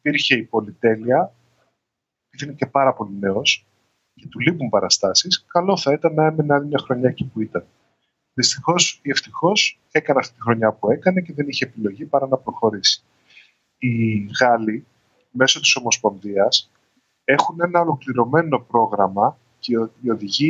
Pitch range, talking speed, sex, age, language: 115-155 Hz, 150 wpm, male, 20-39, Greek